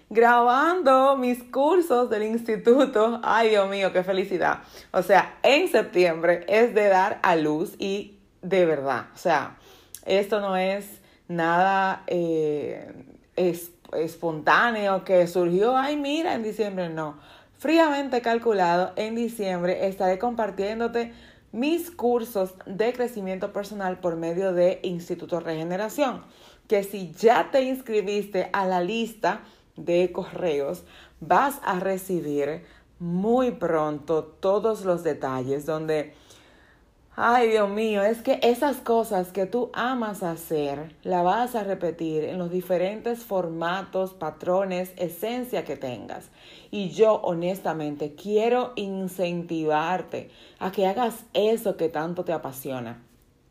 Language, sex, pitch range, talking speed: Spanish, female, 175-225 Hz, 120 wpm